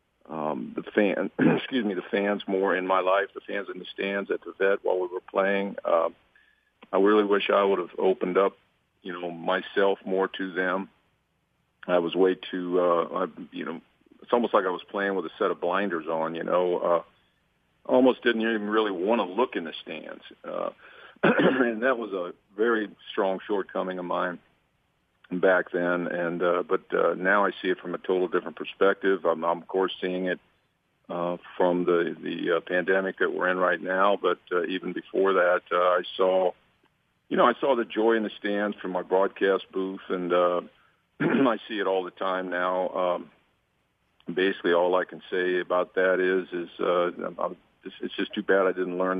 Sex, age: male, 50-69